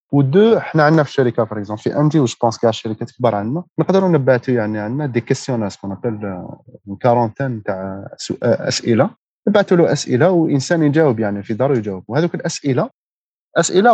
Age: 30-49